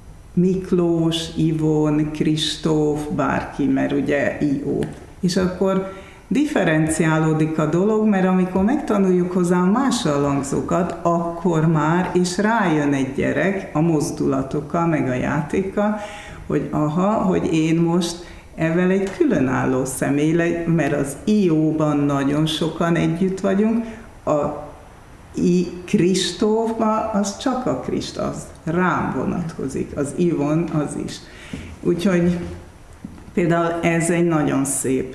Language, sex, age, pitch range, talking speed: Hungarian, female, 60-79, 150-185 Hz, 110 wpm